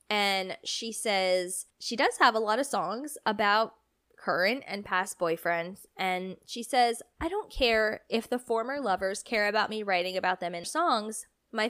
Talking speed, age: 175 wpm, 10-29